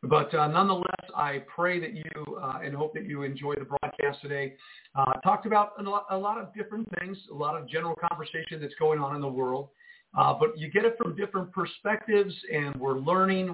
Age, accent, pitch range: 50-69, American, 150-190 Hz